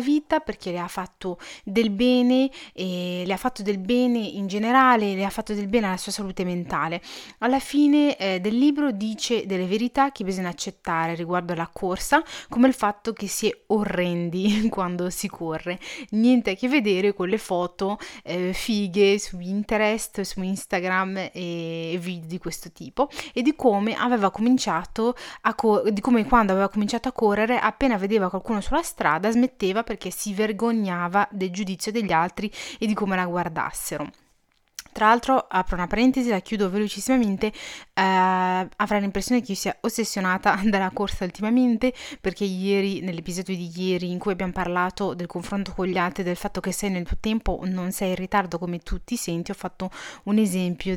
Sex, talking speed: female, 175 wpm